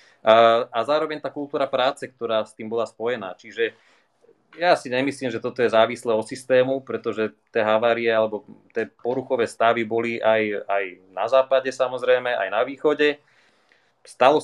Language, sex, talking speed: Slovak, male, 160 wpm